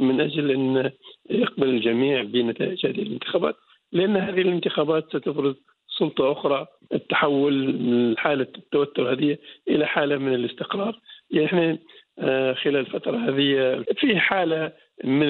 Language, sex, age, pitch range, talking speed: English, male, 50-69, 135-170 Hz, 120 wpm